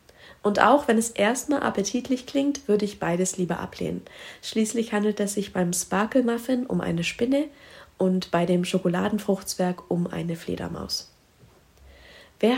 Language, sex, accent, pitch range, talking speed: German, female, German, 170-215 Hz, 140 wpm